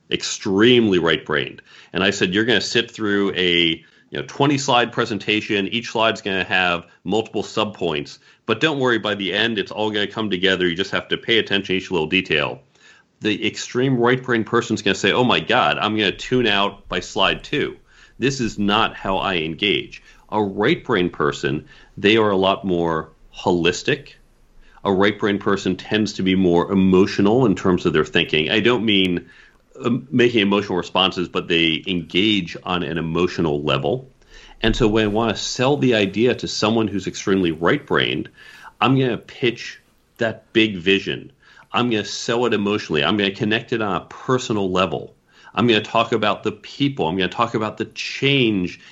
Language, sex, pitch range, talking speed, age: English, male, 95-115 Hz, 190 wpm, 40-59